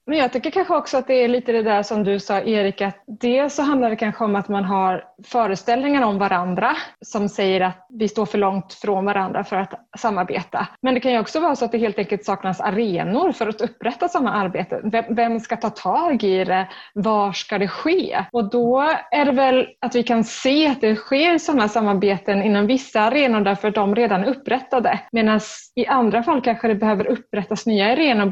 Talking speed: 210 wpm